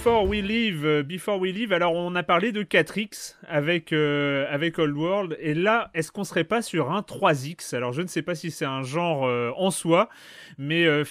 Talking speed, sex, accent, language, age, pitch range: 215 wpm, male, French, French, 30-49, 135-175 Hz